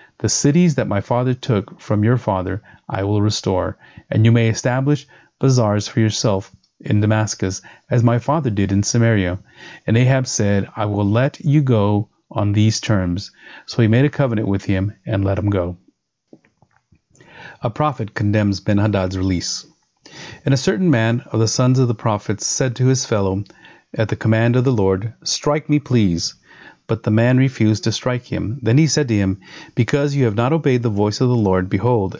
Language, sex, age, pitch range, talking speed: English, male, 30-49, 100-130 Hz, 185 wpm